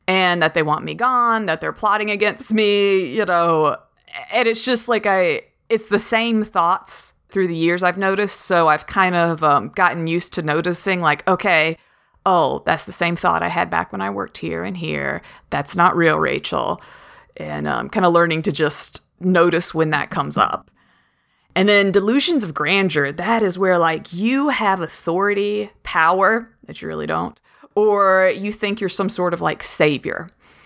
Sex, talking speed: female, 185 wpm